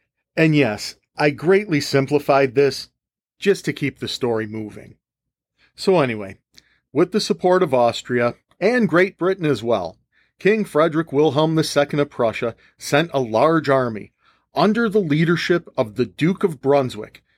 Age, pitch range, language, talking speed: 40-59, 125-160 Hz, English, 145 wpm